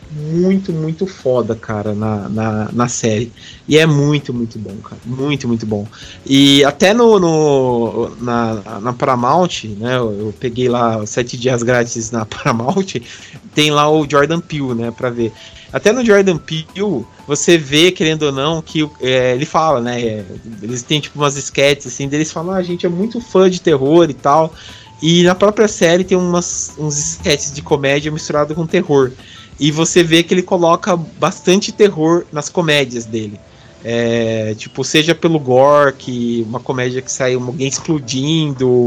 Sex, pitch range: male, 120-170 Hz